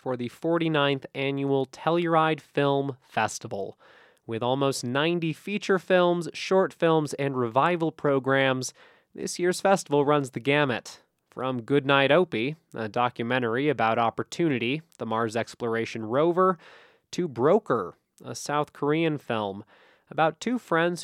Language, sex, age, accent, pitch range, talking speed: English, male, 20-39, American, 120-160 Hz, 125 wpm